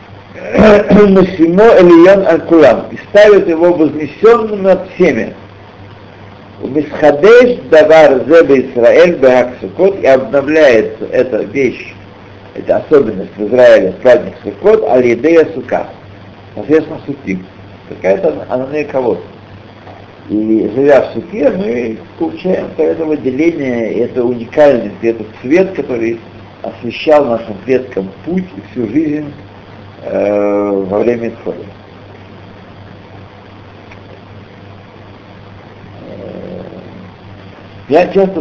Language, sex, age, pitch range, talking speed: Russian, male, 60-79, 100-145 Hz, 75 wpm